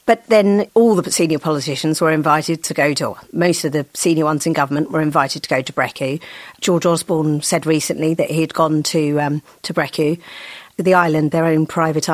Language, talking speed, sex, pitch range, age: English, 210 wpm, female, 155-175 Hz, 40-59